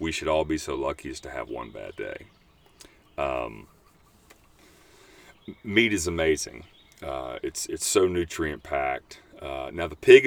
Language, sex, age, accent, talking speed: English, male, 40-59, American, 145 wpm